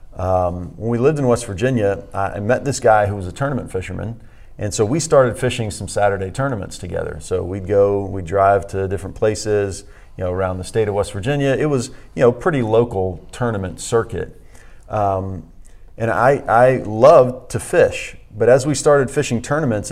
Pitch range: 95-120 Hz